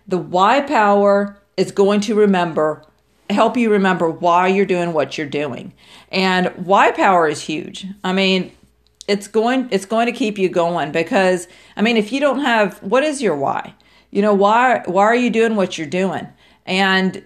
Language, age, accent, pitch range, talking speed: English, 50-69, American, 170-210 Hz, 185 wpm